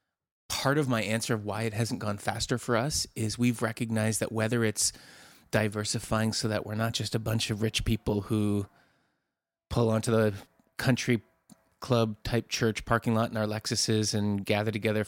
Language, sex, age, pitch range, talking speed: English, male, 30-49, 105-120 Hz, 180 wpm